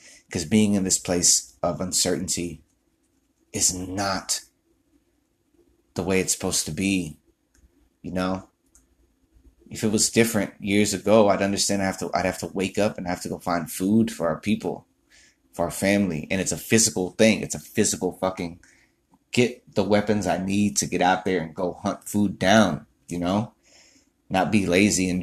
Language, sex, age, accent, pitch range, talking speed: English, male, 30-49, American, 90-105 Hz, 170 wpm